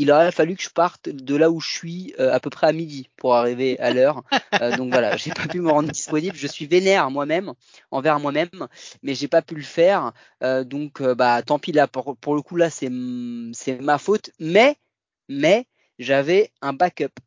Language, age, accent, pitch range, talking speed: French, 20-39, French, 125-170 Hz, 225 wpm